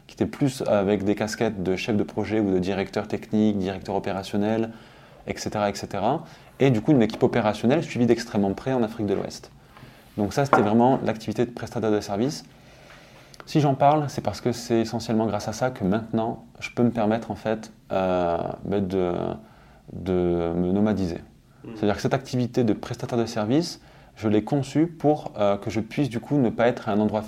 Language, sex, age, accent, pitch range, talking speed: French, male, 20-39, French, 105-120 Hz, 195 wpm